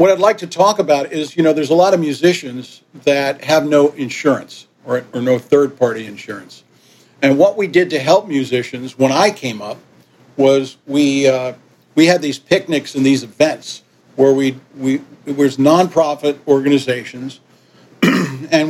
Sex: male